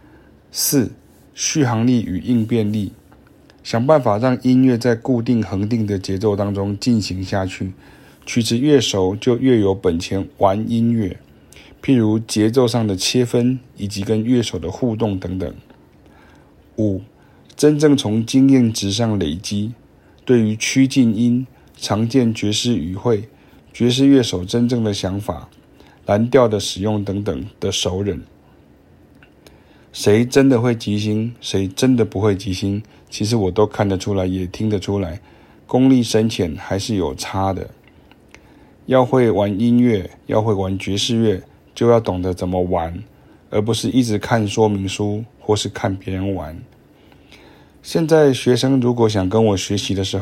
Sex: male